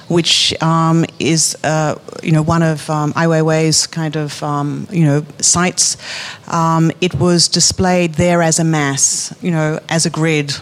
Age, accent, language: 40-59, Australian, English